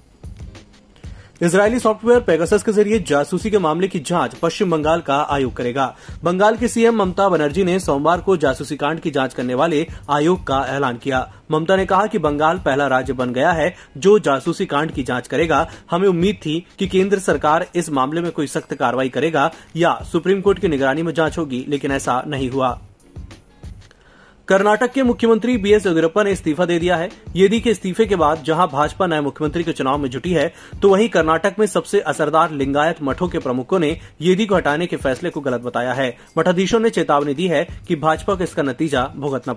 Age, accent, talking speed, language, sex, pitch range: 30-49, native, 195 wpm, Hindi, male, 140-190 Hz